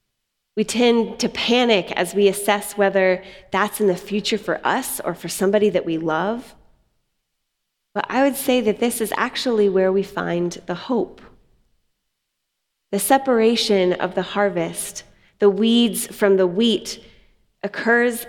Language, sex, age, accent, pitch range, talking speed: English, female, 20-39, American, 190-220 Hz, 145 wpm